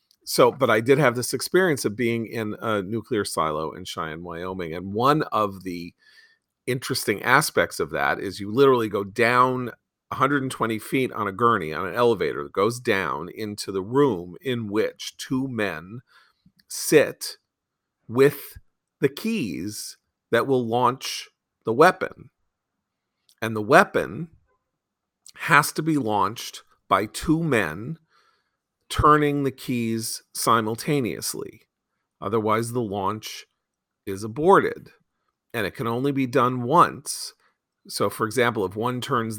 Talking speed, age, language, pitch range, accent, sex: 135 wpm, 40-59, English, 110-140 Hz, American, male